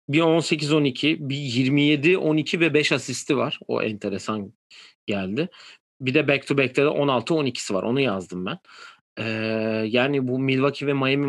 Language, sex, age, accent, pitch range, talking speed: Turkish, male, 40-59, native, 115-140 Hz, 135 wpm